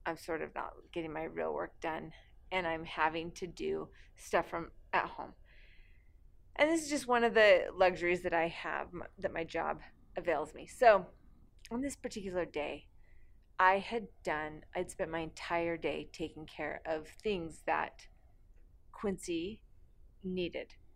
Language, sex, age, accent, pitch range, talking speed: English, female, 30-49, American, 155-200 Hz, 155 wpm